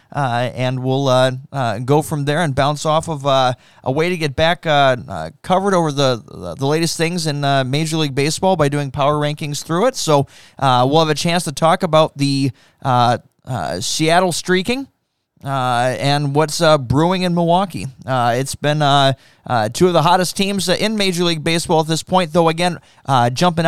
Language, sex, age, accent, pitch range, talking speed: English, male, 20-39, American, 130-160 Hz, 205 wpm